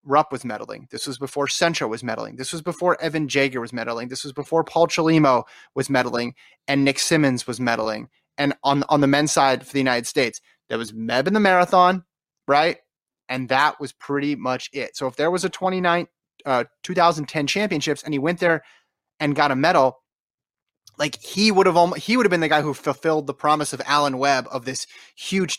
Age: 30-49